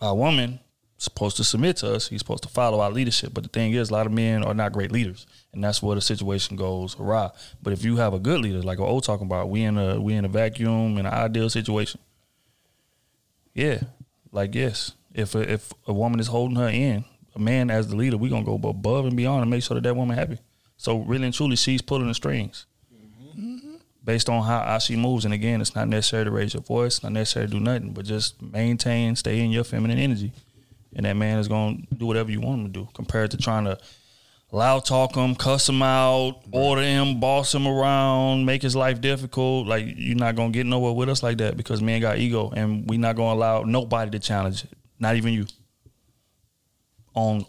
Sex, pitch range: male, 110-125 Hz